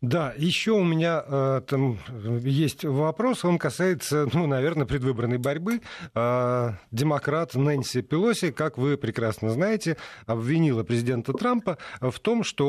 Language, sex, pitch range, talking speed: Russian, male, 115-155 Hz, 125 wpm